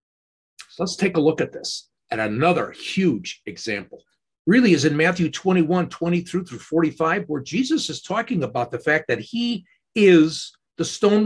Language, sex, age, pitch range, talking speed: English, male, 50-69, 155-225 Hz, 165 wpm